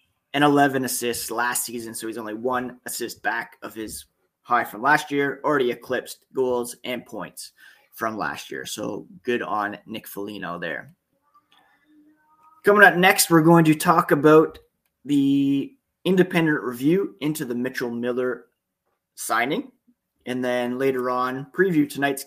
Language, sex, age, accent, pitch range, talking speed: English, male, 30-49, American, 120-165 Hz, 145 wpm